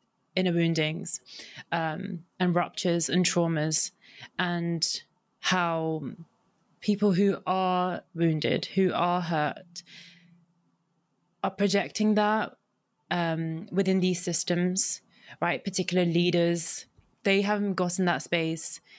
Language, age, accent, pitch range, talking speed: English, 20-39, British, 165-190 Hz, 100 wpm